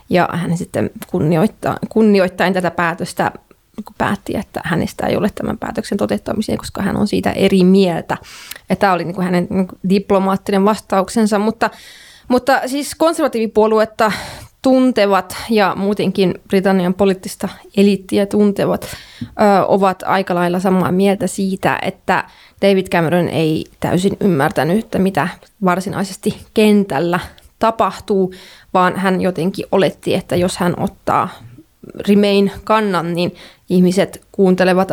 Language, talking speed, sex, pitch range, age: Finnish, 115 wpm, female, 185-210 Hz, 20-39